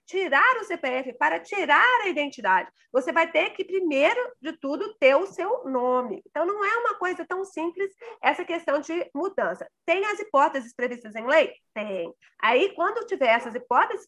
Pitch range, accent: 265-365 Hz, Brazilian